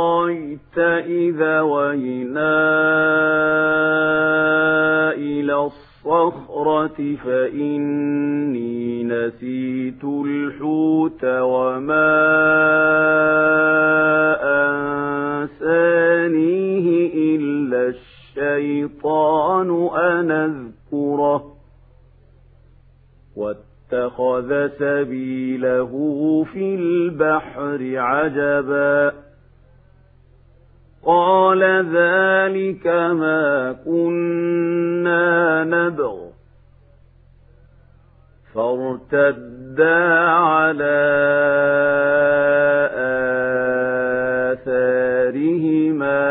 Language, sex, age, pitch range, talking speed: Arabic, male, 50-69, 130-170 Hz, 30 wpm